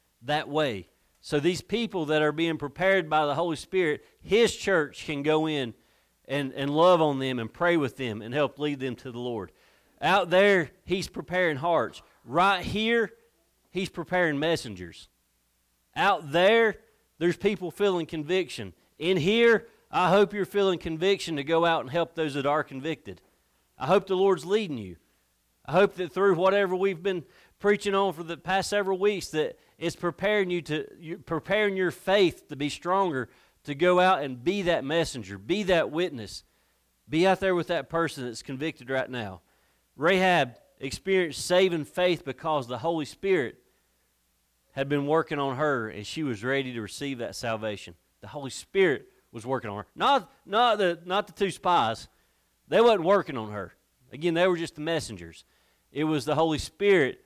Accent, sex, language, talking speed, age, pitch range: American, male, English, 175 wpm, 40-59, 120-185 Hz